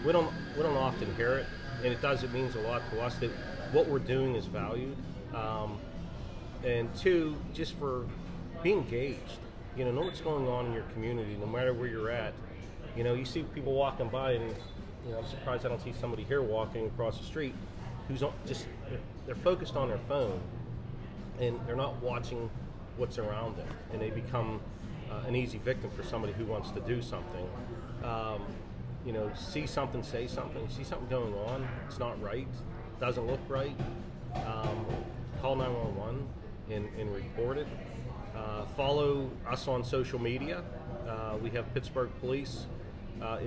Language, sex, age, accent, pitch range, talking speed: English, male, 40-59, American, 110-130 Hz, 175 wpm